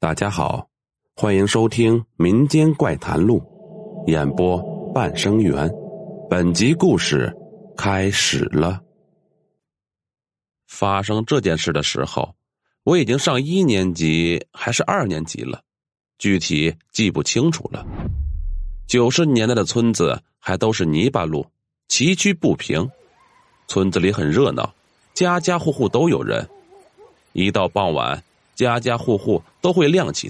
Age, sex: 30-49, male